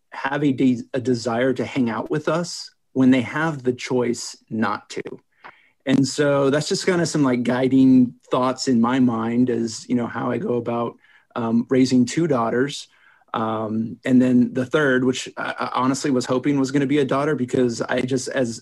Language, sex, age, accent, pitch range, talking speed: English, male, 30-49, American, 125-145 Hz, 195 wpm